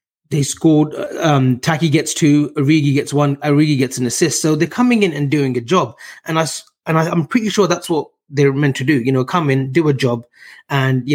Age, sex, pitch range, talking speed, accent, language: 20-39, male, 130-155 Hz, 230 wpm, British, English